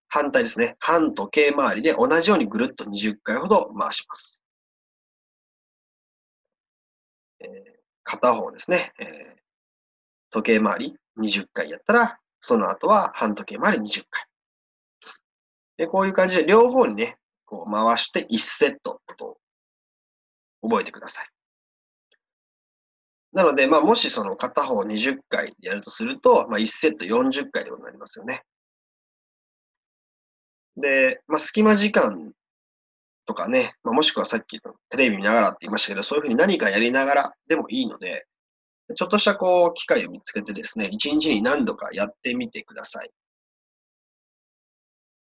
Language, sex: Japanese, male